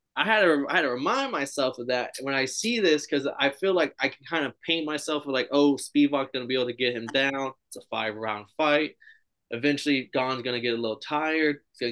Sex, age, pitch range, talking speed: male, 20-39, 120-150 Hz, 250 wpm